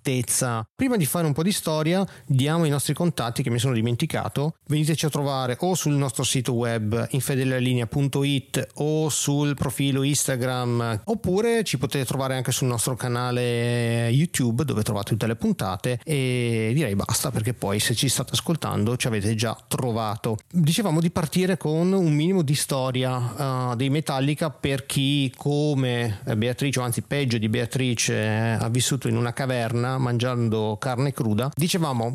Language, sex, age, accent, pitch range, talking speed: Italian, male, 30-49, native, 120-145 Hz, 155 wpm